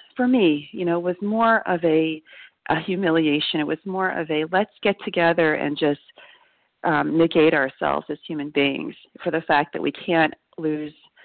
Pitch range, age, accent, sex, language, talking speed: 160-195 Hz, 40-59, American, female, English, 180 wpm